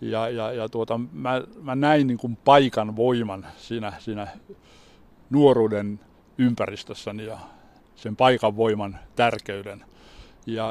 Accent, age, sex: native, 60-79, male